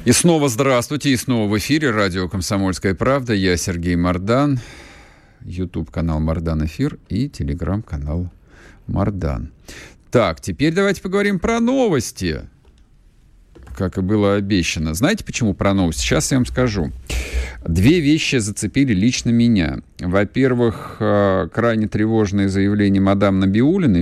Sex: male